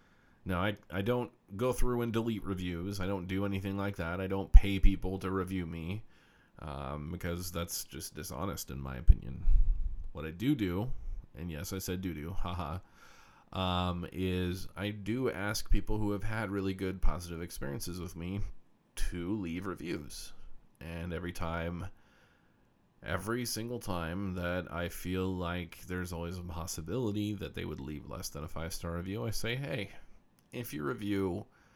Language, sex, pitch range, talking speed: English, male, 85-100 Hz, 165 wpm